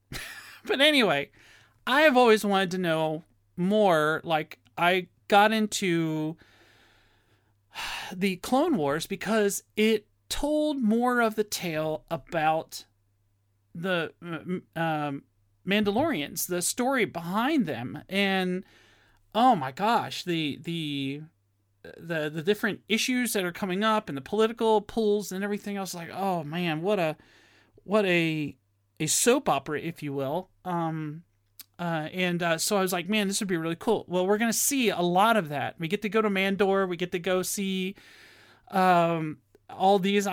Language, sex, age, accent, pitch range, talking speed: English, male, 40-59, American, 155-205 Hz, 155 wpm